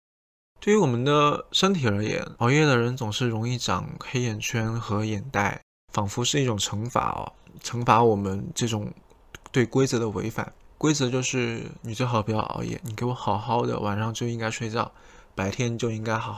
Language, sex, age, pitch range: Chinese, male, 20-39, 110-130 Hz